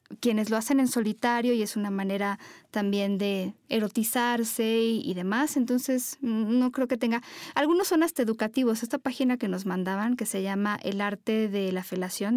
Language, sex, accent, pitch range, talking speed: Spanish, female, Mexican, 205-260 Hz, 180 wpm